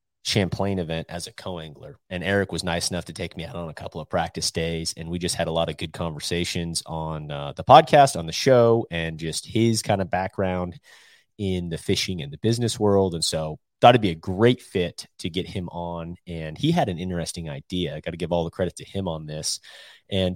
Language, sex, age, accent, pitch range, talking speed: English, male, 30-49, American, 85-105 Hz, 235 wpm